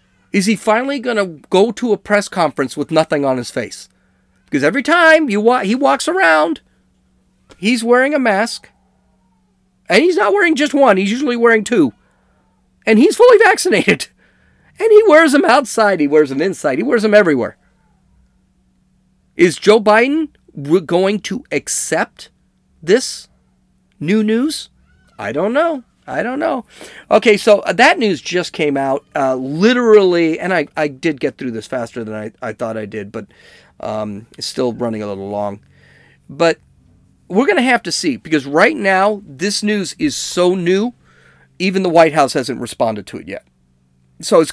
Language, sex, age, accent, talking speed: English, male, 40-59, American, 170 wpm